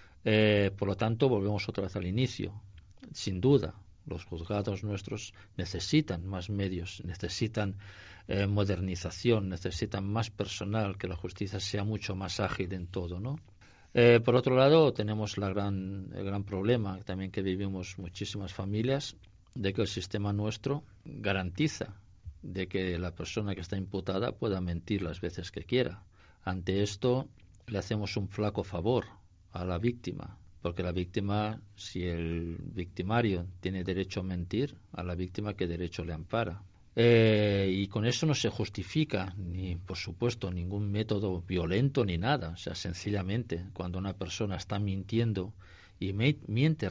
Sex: male